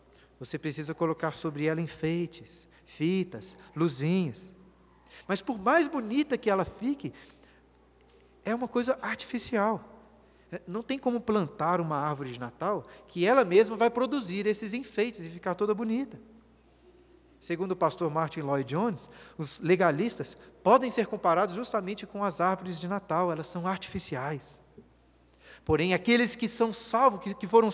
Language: Portuguese